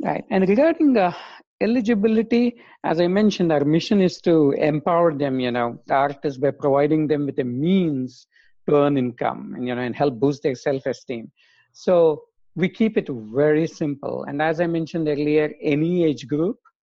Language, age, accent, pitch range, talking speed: English, 50-69, Indian, 140-180 Hz, 180 wpm